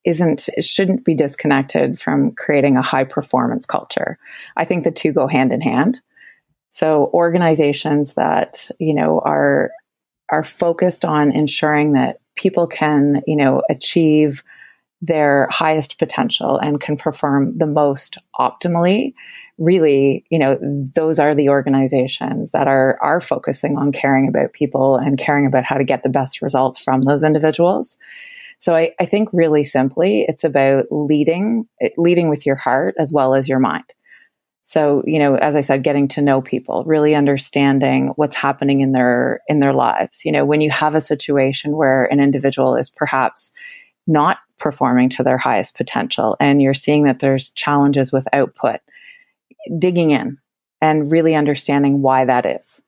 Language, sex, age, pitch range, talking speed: English, female, 30-49, 135-165 Hz, 160 wpm